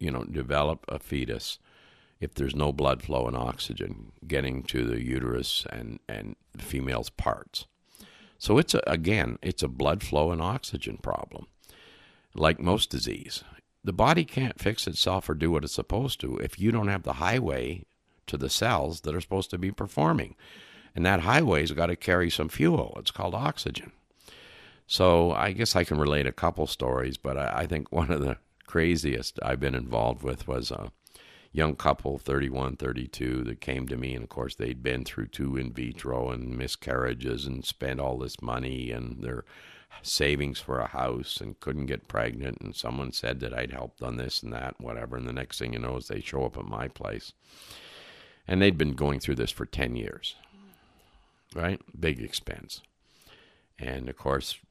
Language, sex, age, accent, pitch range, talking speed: English, male, 60-79, American, 65-85 Hz, 185 wpm